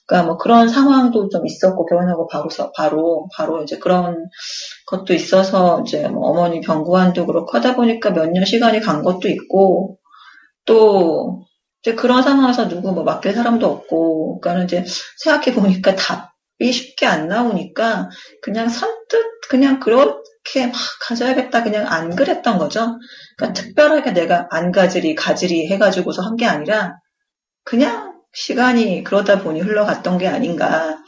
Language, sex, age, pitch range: Korean, female, 30-49, 175-245 Hz